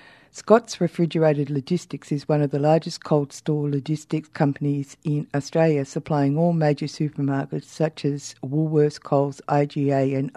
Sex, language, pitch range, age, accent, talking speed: female, English, 140-160 Hz, 60-79, Australian, 135 wpm